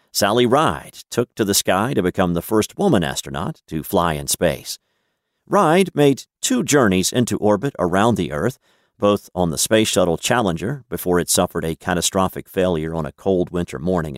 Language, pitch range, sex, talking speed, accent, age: English, 85-100 Hz, male, 180 wpm, American, 50-69